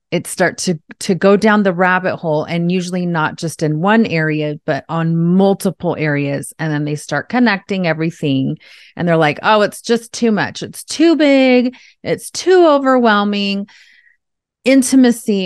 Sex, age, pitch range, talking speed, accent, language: female, 30-49, 170-225 Hz, 160 wpm, American, English